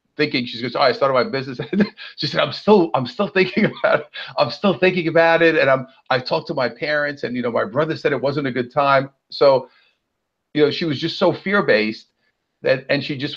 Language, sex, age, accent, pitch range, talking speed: English, male, 50-69, American, 120-165 Hz, 240 wpm